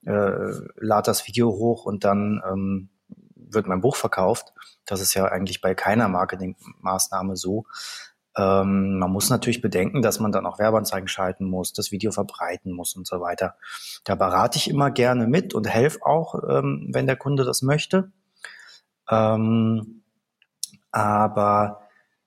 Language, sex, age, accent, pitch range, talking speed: German, male, 30-49, German, 100-125 Hz, 150 wpm